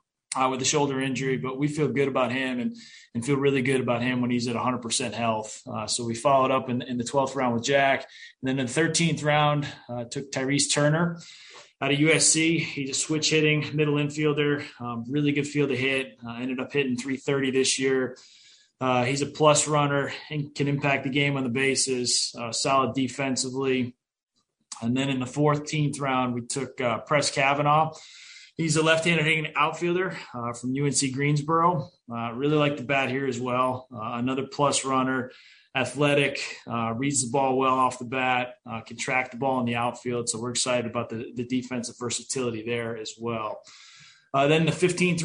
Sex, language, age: male, English, 20-39